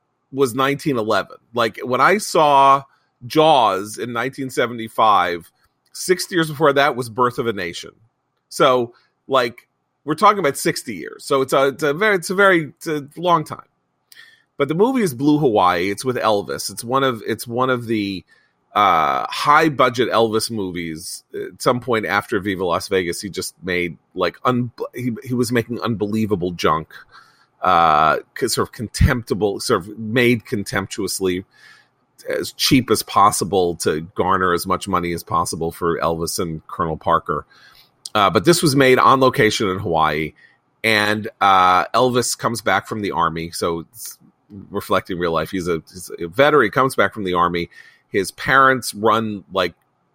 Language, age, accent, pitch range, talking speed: English, 30-49, American, 95-135 Hz, 165 wpm